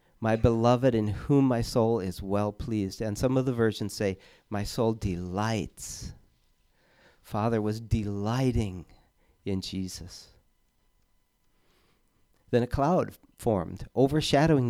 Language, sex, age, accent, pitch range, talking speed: English, male, 40-59, American, 100-130 Hz, 115 wpm